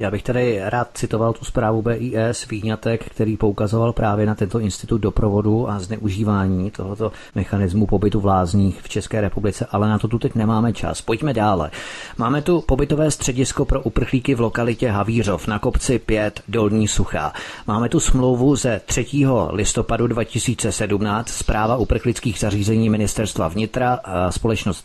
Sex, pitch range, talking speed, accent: male, 105-120 Hz, 150 wpm, native